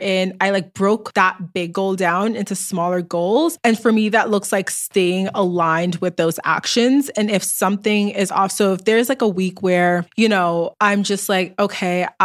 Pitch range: 185-220 Hz